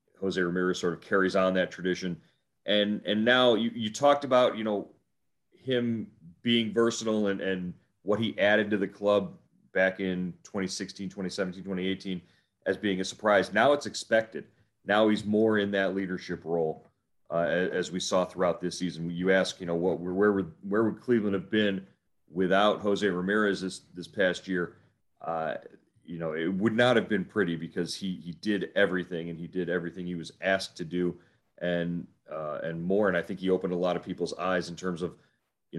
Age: 40-59